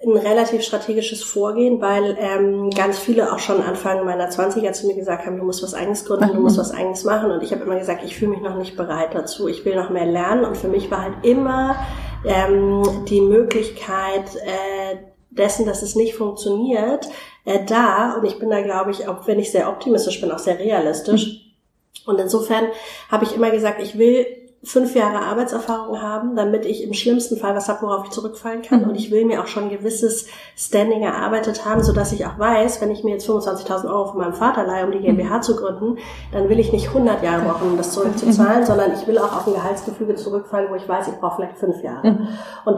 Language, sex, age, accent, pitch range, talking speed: German, female, 30-49, German, 195-225 Hz, 220 wpm